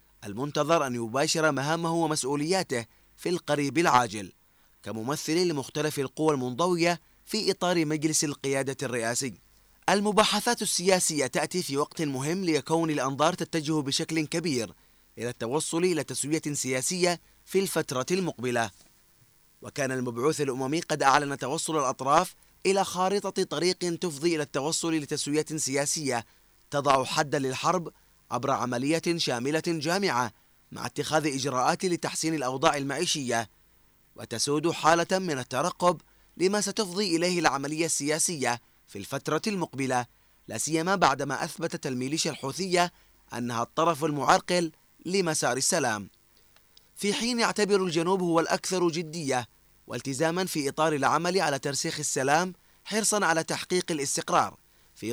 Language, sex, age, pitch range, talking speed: Arabic, male, 30-49, 130-170 Hz, 115 wpm